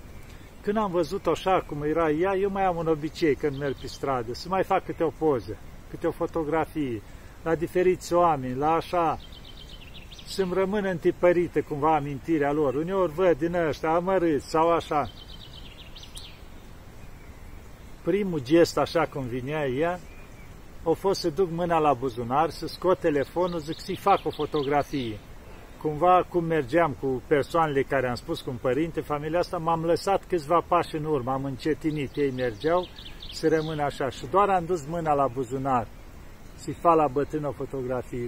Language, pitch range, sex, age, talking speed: Romanian, 135-170 Hz, male, 50-69, 160 wpm